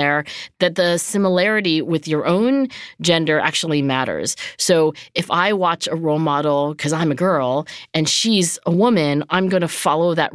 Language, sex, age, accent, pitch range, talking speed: English, female, 40-59, American, 160-220 Hz, 175 wpm